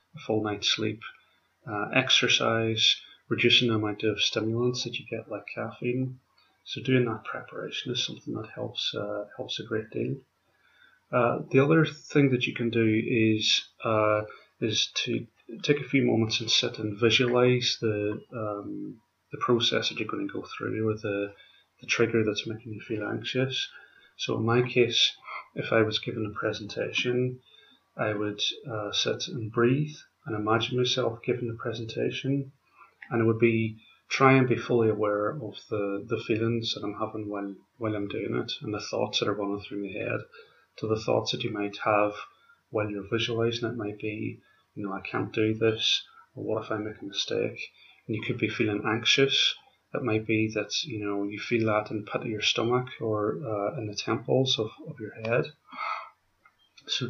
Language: English